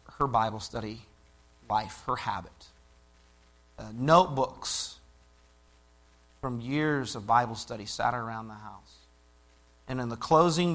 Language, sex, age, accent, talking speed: English, male, 40-59, American, 115 wpm